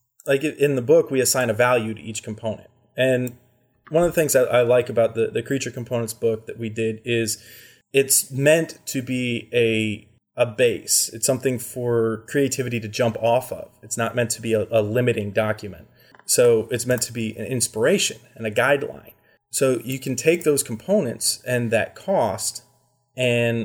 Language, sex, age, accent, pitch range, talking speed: English, male, 20-39, American, 115-130 Hz, 185 wpm